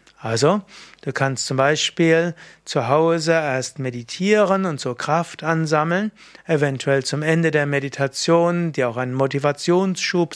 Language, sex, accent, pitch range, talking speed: German, male, German, 140-175 Hz, 125 wpm